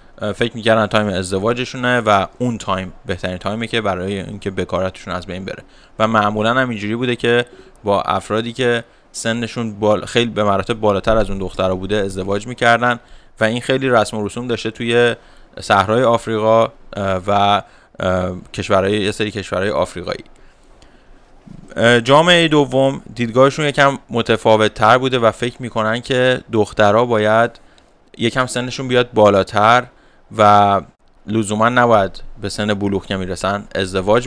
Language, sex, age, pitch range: English, male, 20-39, 105-120 Hz